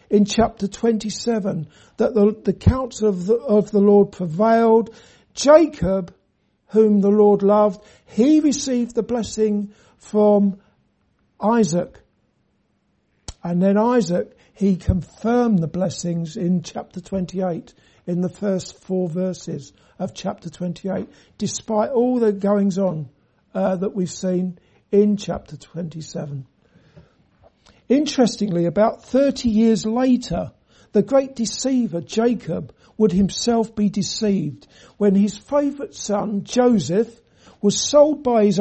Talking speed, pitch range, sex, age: 115 wpm, 185-230 Hz, male, 60-79